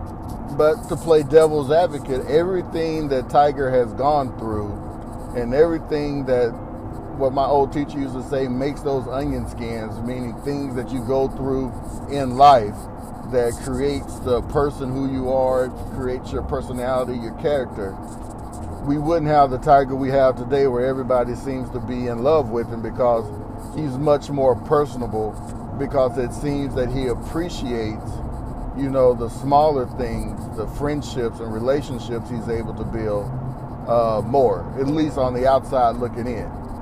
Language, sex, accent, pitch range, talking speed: English, male, American, 115-135 Hz, 155 wpm